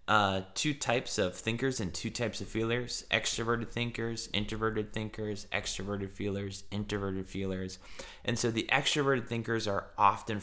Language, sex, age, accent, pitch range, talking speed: English, male, 20-39, American, 95-110 Hz, 140 wpm